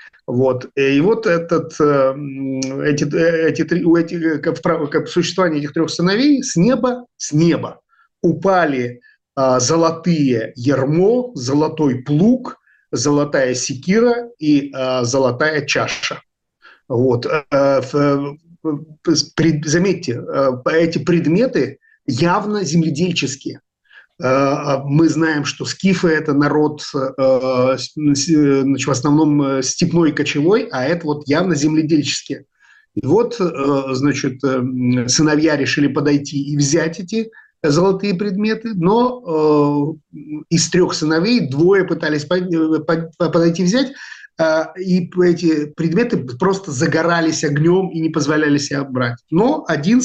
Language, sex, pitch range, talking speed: Russian, male, 140-175 Hz, 100 wpm